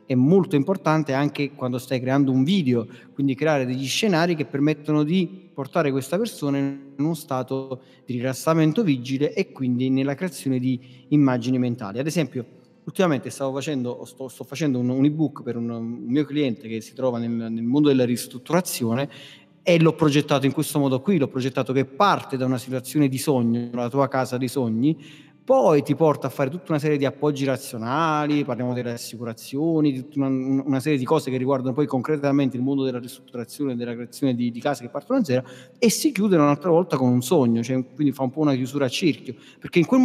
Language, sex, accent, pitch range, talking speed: Italian, male, native, 125-155 Hz, 205 wpm